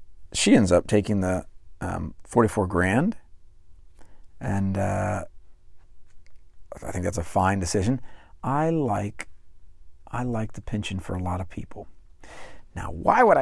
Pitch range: 90-130 Hz